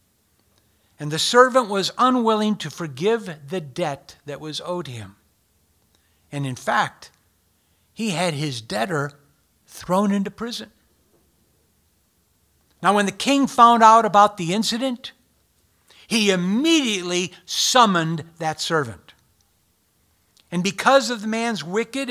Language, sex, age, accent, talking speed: English, male, 60-79, American, 115 wpm